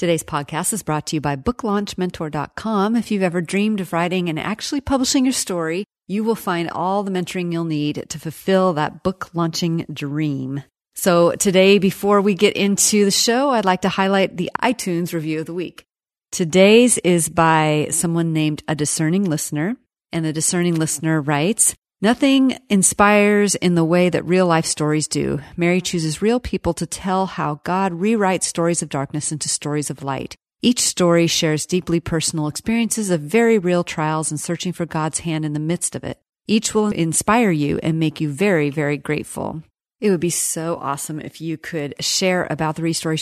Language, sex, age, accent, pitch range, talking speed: English, female, 40-59, American, 155-195 Hz, 180 wpm